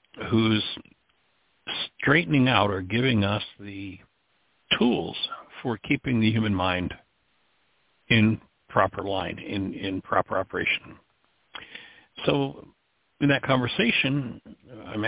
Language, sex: English, male